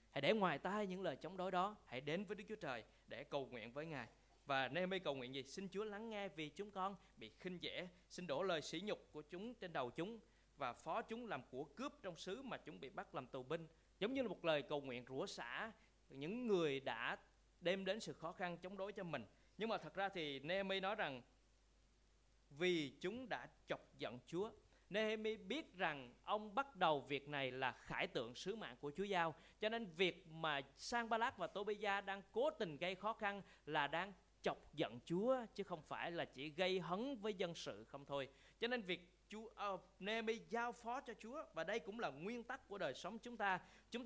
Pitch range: 145-210 Hz